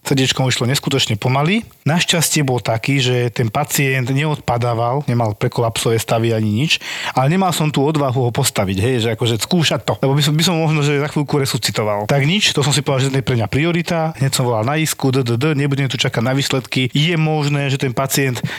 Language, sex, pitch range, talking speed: Slovak, male, 125-160 Hz, 215 wpm